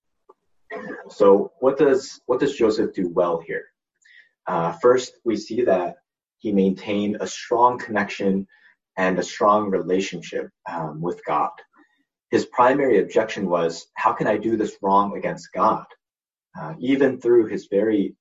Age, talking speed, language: 30-49, 140 wpm, English